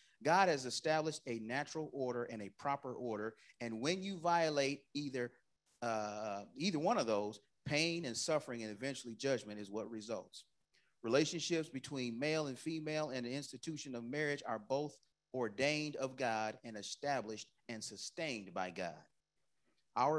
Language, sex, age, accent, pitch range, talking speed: English, male, 40-59, American, 115-155 Hz, 150 wpm